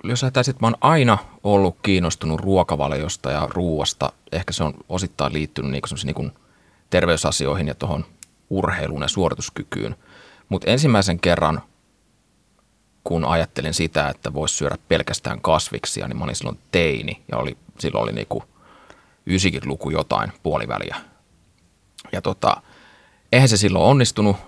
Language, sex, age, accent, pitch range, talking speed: Finnish, male, 30-49, native, 80-100 Hz, 130 wpm